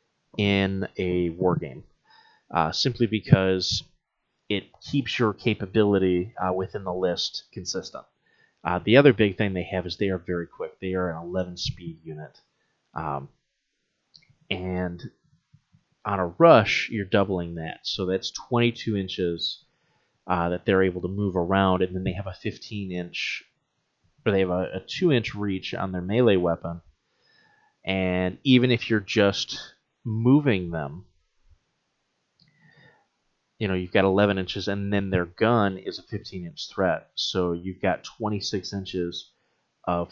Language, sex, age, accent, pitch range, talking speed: English, male, 30-49, American, 90-115 Hz, 150 wpm